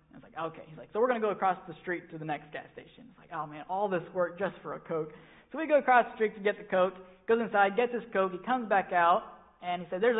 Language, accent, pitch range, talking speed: English, American, 175-220 Hz, 310 wpm